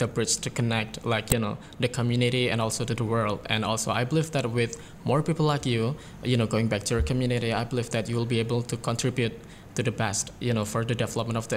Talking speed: 255 wpm